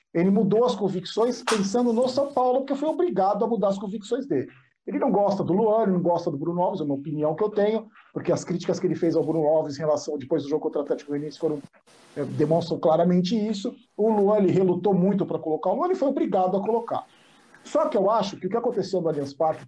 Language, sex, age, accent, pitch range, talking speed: Portuguese, male, 50-69, Brazilian, 165-215 Hz, 245 wpm